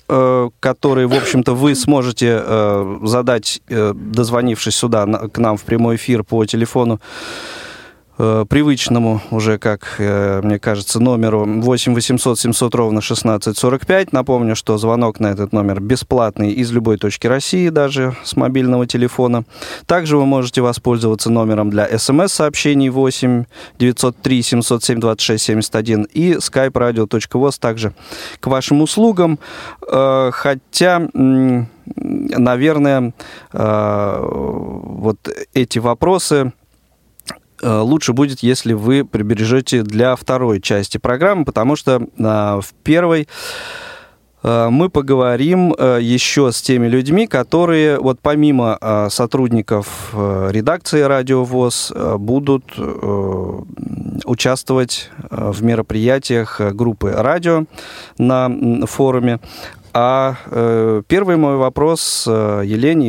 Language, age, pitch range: Russian, 20-39, 110-135 Hz